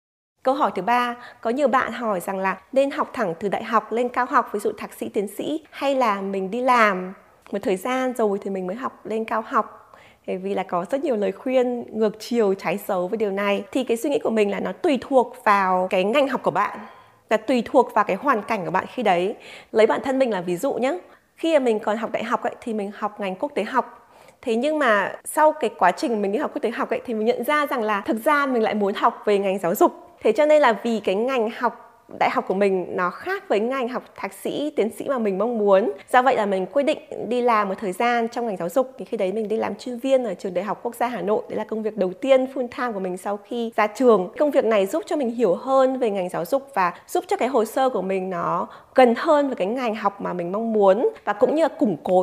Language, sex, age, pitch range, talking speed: Vietnamese, female, 20-39, 200-260 Hz, 280 wpm